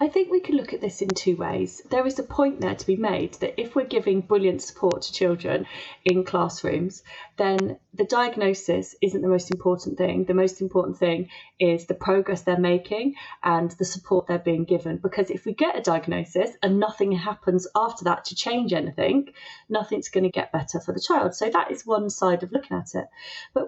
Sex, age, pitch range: female, 30-49, 180-215 Hz